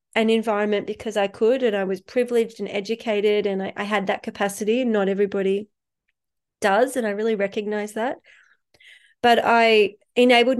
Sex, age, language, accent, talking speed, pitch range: female, 30-49, English, Australian, 160 wpm, 200-230 Hz